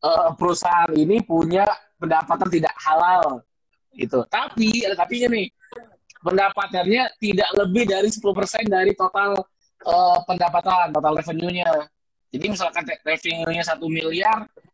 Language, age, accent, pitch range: Indonesian, 20-39, native, 160-220 Hz